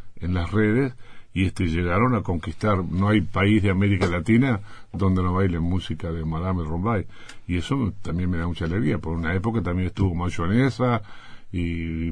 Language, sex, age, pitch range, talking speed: Spanish, male, 70-89, 90-110 Hz, 180 wpm